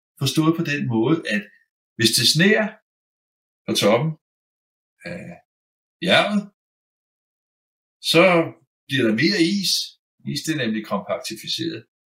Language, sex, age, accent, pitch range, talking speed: Danish, male, 60-79, native, 130-175 Hz, 110 wpm